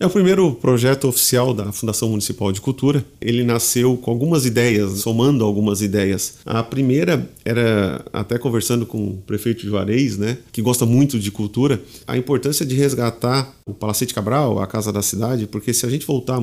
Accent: Brazilian